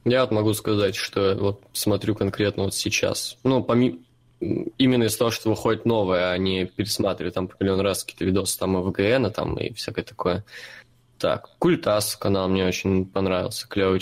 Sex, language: male, Russian